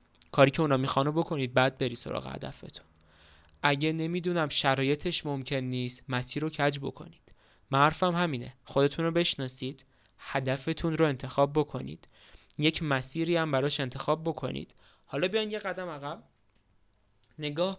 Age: 20-39